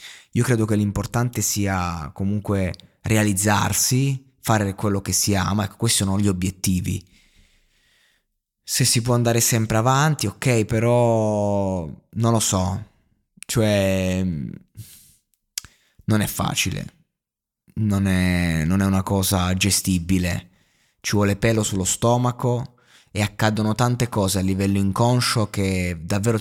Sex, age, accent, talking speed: male, 20-39, native, 115 wpm